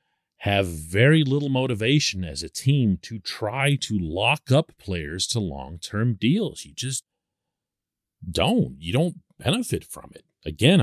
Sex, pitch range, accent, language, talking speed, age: male, 100-155 Hz, American, English, 140 wpm, 40-59